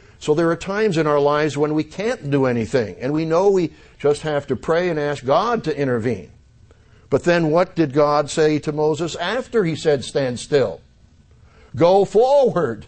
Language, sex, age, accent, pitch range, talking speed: English, male, 60-79, American, 135-170 Hz, 185 wpm